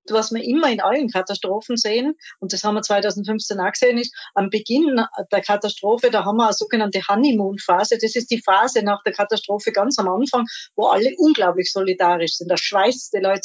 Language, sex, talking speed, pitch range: German, female, 195 wpm, 190-230 Hz